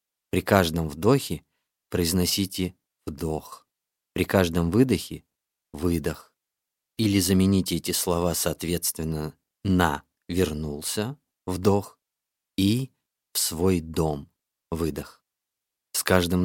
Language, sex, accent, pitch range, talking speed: Russian, male, native, 85-100 Hz, 95 wpm